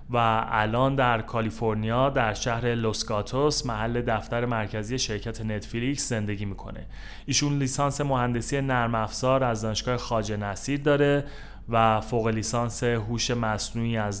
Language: Persian